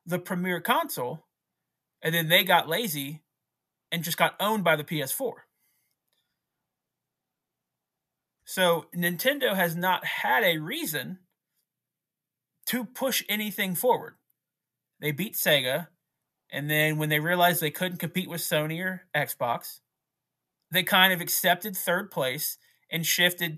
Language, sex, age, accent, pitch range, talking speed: English, male, 30-49, American, 150-185 Hz, 125 wpm